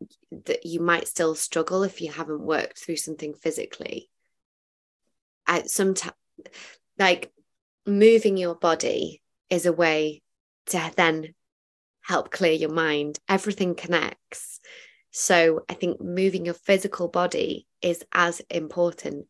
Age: 20-39